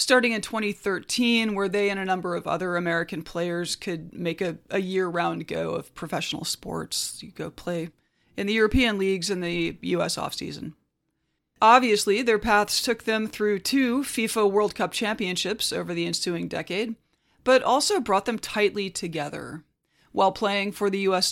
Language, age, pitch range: English, 30-49, 180-215 Hz